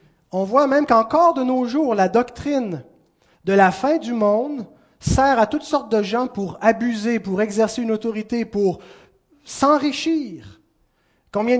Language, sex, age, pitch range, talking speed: French, male, 30-49, 195-285 Hz, 150 wpm